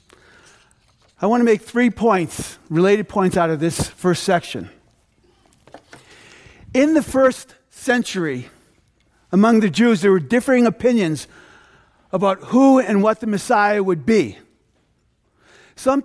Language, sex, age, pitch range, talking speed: English, male, 50-69, 190-245 Hz, 125 wpm